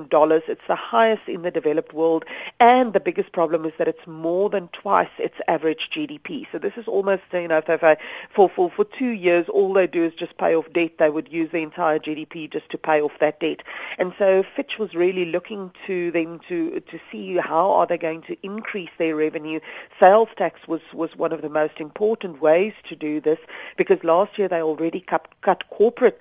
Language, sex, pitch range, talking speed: English, female, 160-195 Hz, 210 wpm